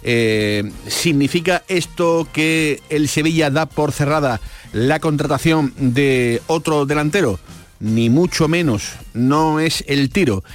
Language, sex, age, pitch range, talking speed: Spanish, male, 40-59, 115-150 Hz, 120 wpm